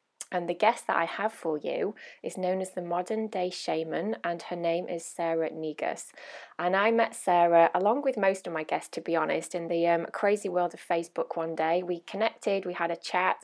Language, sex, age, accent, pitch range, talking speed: English, female, 20-39, British, 165-190 Hz, 220 wpm